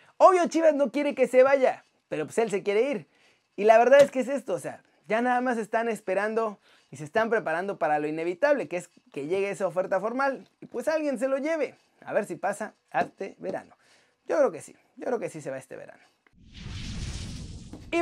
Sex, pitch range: male, 215-280 Hz